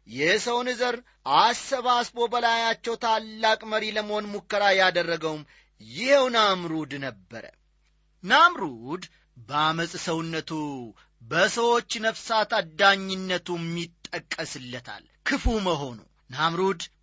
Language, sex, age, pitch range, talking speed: Amharic, male, 30-49, 155-225 Hz, 70 wpm